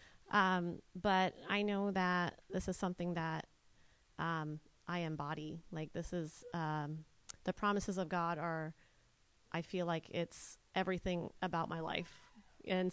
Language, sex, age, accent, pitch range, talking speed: English, female, 30-49, American, 175-210 Hz, 140 wpm